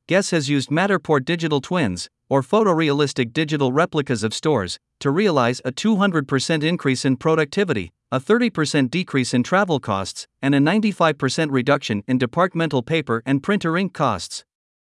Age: 50-69